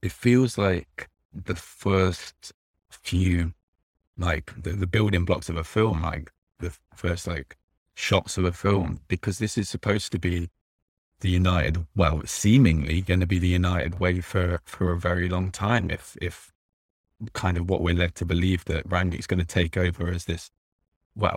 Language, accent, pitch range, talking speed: English, British, 85-100 Hz, 175 wpm